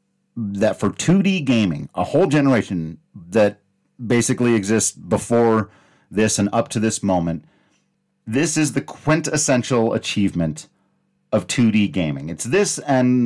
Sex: male